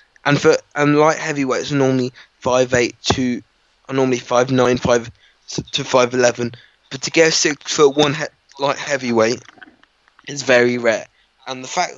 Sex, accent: male, British